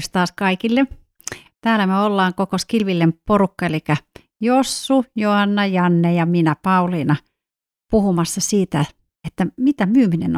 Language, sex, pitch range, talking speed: Finnish, female, 165-210 Hz, 120 wpm